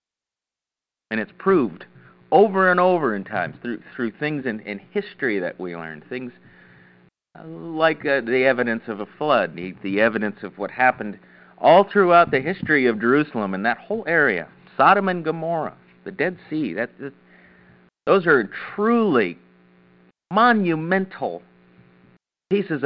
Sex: male